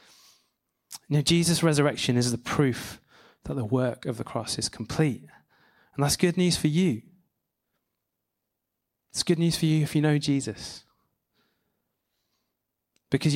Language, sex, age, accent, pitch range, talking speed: English, male, 20-39, British, 120-155 Hz, 145 wpm